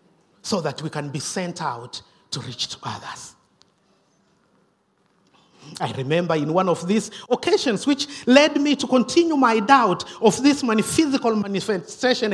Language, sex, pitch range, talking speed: English, male, 200-275 Hz, 140 wpm